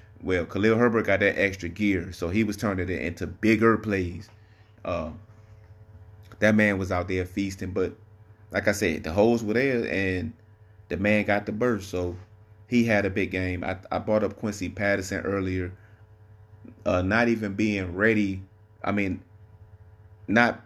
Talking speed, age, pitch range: 165 wpm, 30-49, 95-110 Hz